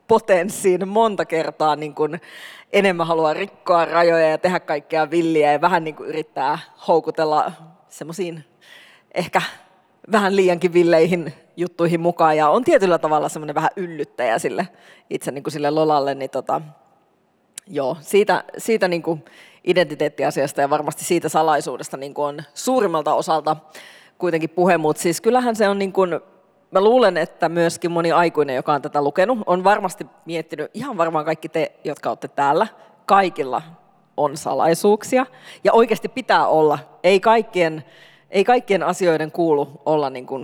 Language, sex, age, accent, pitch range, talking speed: Finnish, female, 30-49, native, 155-185 Hz, 140 wpm